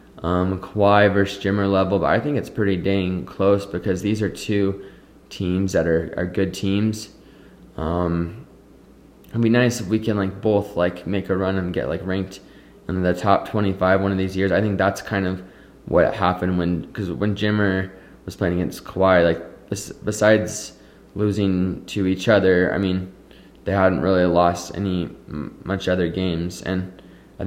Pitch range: 90-100 Hz